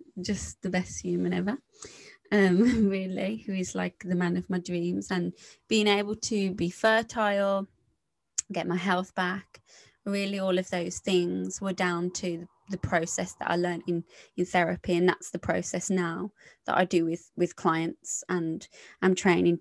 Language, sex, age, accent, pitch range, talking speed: English, female, 20-39, British, 175-205 Hz, 170 wpm